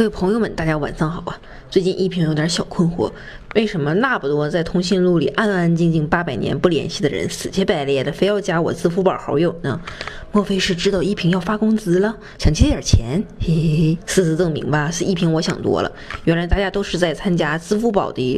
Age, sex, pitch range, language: 20-39, female, 160-200 Hz, Chinese